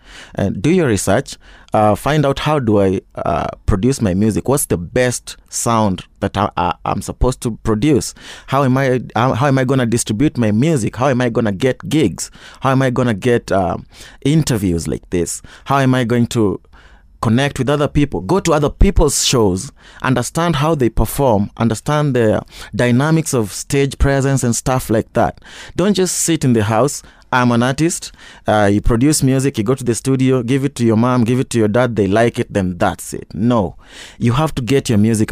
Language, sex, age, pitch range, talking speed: English, male, 30-49, 110-145 Hz, 205 wpm